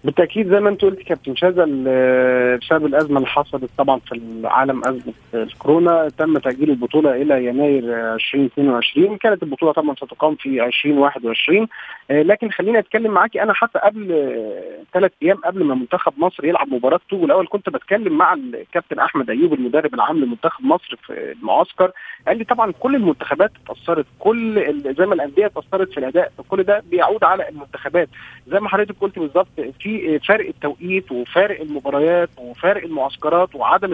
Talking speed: 150 wpm